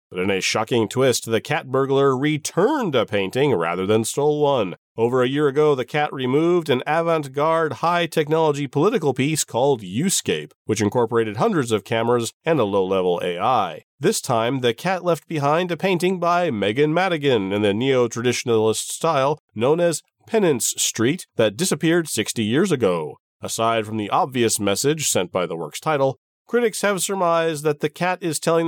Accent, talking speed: American, 165 wpm